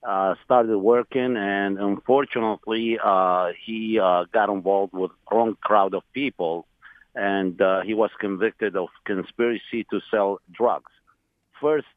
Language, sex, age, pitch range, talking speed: English, male, 50-69, 100-125 Hz, 135 wpm